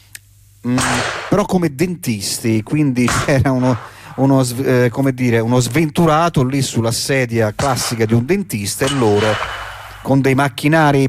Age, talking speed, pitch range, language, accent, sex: 40-59, 115 wpm, 105-140 Hz, Italian, native, male